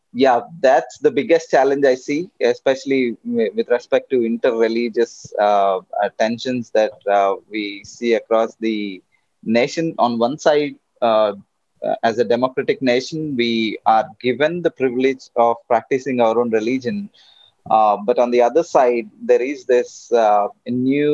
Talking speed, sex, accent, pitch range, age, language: 140 wpm, male, Indian, 115-145 Hz, 20-39, English